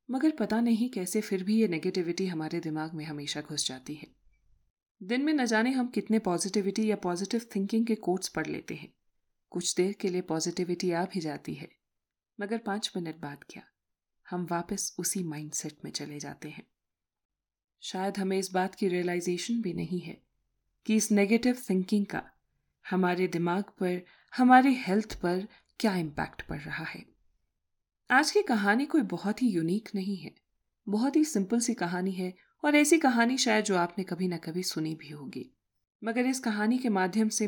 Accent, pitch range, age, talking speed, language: native, 170-220 Hz, 30-49, 175 wpm, Hindi